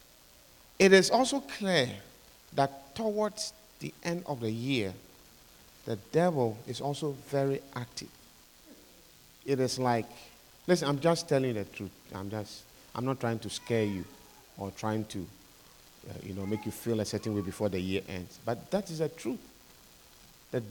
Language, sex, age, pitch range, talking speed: English, male, 50-69, 110-150 Hz, 160 wpm